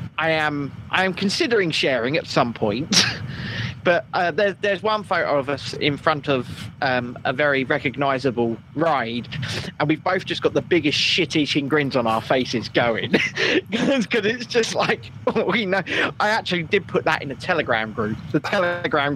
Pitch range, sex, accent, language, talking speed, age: 135-190 Hz, male, British, English, 175 wpm, 20-39